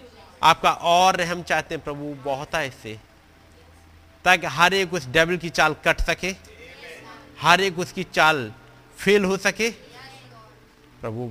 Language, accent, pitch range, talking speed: Hindi, native, 100-145 Hz, 135 wpm